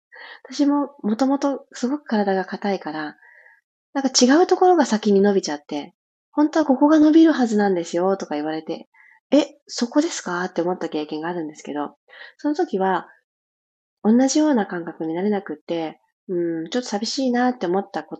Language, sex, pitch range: Japanese, female, 175-275 Hz